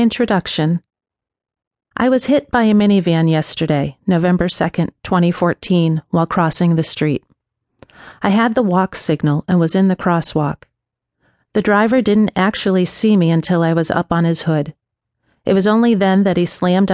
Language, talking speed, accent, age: English, 160 wpm, American, 40-59